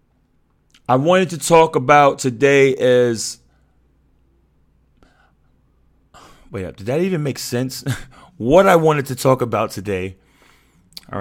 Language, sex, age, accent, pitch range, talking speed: English, male, 30-49, American, 105-135 Hz, 120 wpm